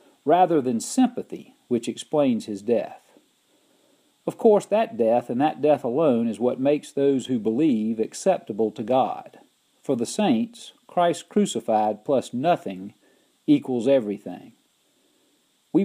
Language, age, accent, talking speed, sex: English, 50-69, American, 130 wpm, male